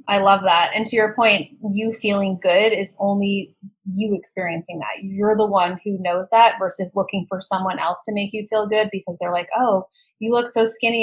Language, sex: English, female